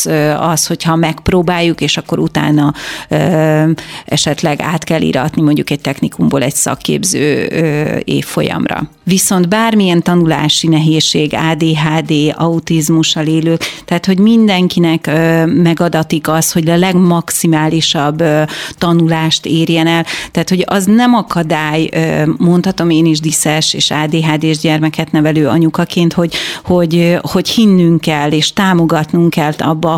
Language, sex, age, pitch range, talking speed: Hungarian, female, 30-49, 160-185 Hz, 115 wpm